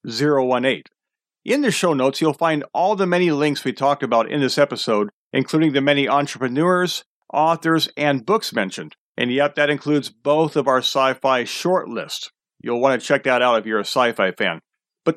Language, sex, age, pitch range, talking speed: English, male, 40-59, 130-160 Hz, 180 wpm